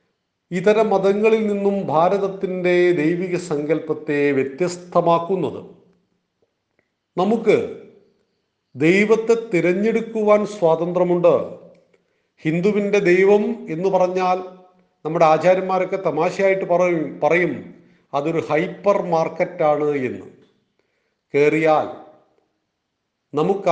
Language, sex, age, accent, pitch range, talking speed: Malayalam, male, 40-59, native, 165-205 Hz, 65 wpm